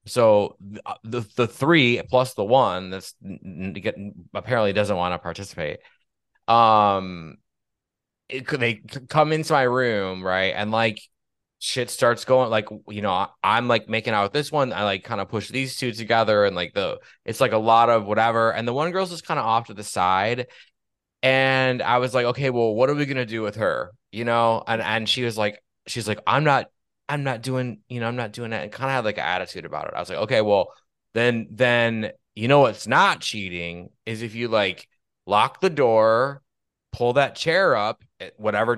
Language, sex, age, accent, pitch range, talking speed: English, male, 20-39, American, 105-130 Hz, 205 wpm